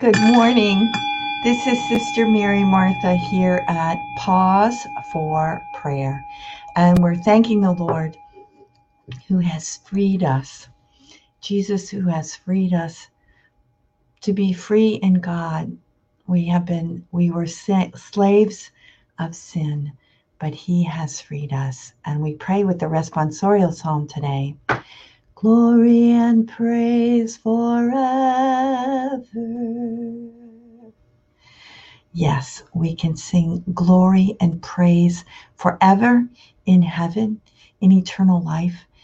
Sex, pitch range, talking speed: female, 165-230 Hz, 105 wpm